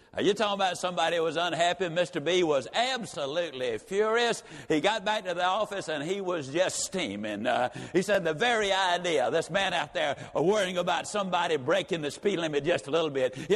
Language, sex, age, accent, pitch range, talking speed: English, male, 60-79, American, 170-205 Hz, 200 wpm